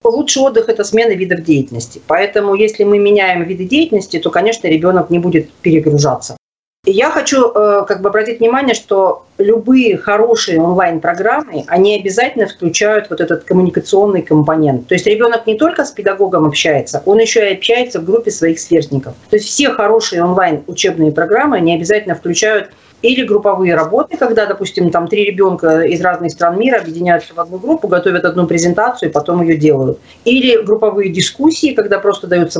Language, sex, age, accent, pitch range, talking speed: Russian, female, 40-59, native, 165-220 Hz, 160 wpm